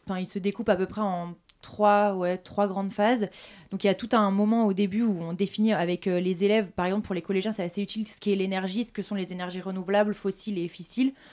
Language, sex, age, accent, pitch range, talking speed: French, female, 20-39, French, 180-210 Hz, 260 wpm